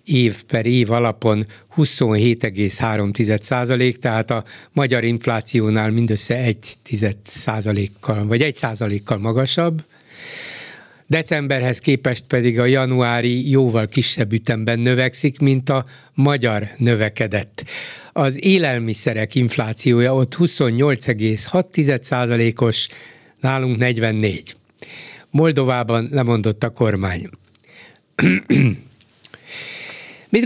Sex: male